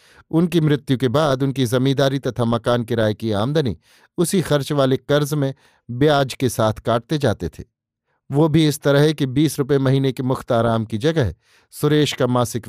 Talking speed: 175 wpm